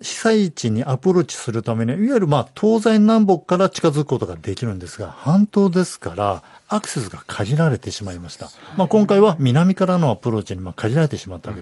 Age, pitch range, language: 50-69, 115-180 Hz, Japanese